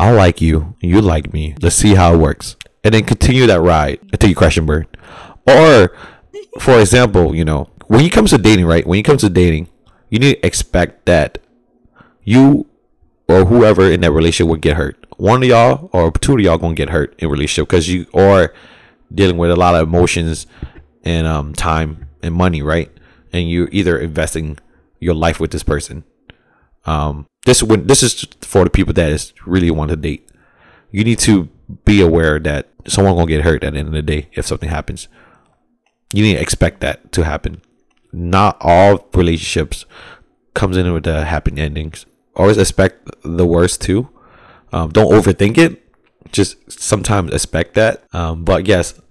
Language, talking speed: English, 185 wpm